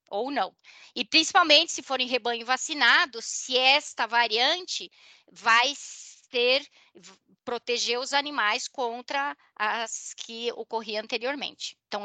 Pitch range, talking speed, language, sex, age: 215-275 Hz, 110 wpm, Portuguese, female, 20-39